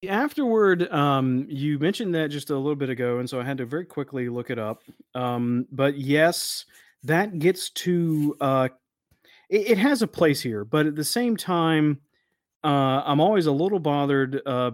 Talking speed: 185 wpm